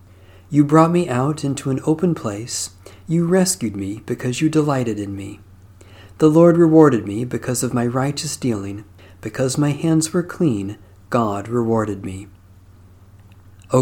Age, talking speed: 40-59, 150 wpm